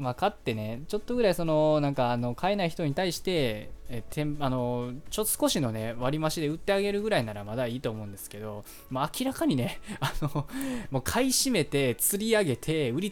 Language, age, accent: Japanese, 20-39, native